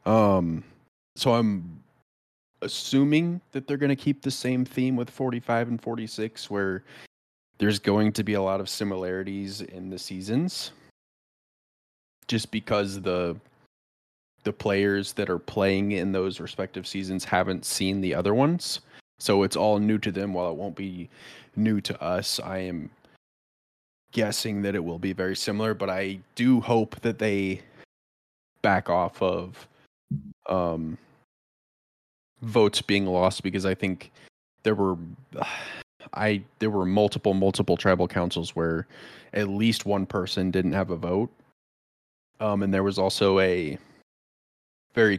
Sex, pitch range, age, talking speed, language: male, 95-110 Hz, 20-39, 145 wpm, English